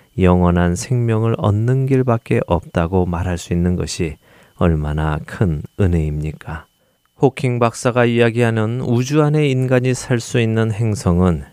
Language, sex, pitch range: Korean, male, 90-125 Hz